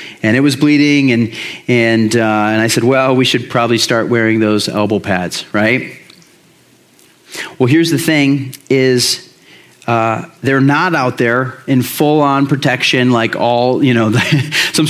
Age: 30-49